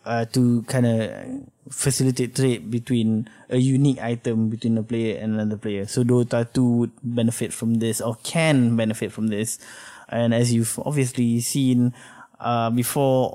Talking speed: 155 wpm